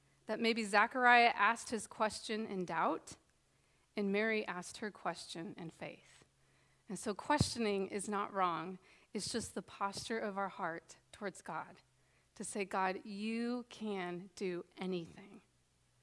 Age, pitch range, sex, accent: 30-49, 185-225 Hz, female, American